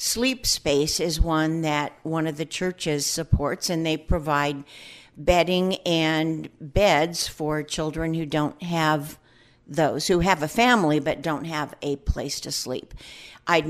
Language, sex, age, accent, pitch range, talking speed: English, female, 50-69, American, 150-170 Hz, 150 wpm